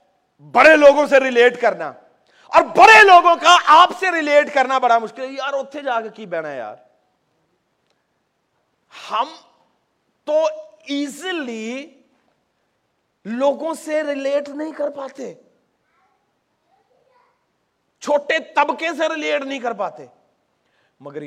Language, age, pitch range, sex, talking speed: Urdu, 40-59, 205-295 Hz, male, 115 wpm